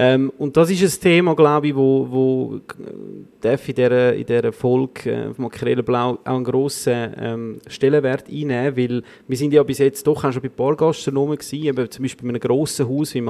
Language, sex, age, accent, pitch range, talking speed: German, male, 30-49, Austrian, 125-150 Hz, 180 wpm